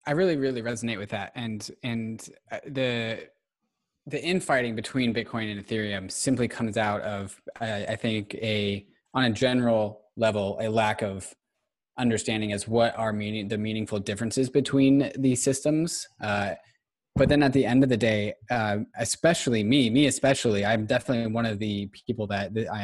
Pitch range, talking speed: 105-125 Hz, 170 wpm